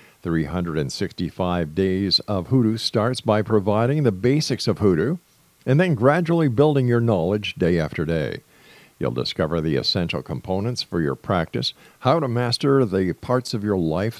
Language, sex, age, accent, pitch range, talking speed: English, male, 50-69, American, 100-130 Hz, 150 wpm